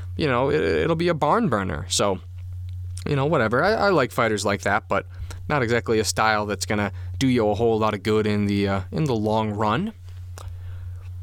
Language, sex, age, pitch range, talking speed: English, male, 20-39, 95-125 Hz, 220 wpm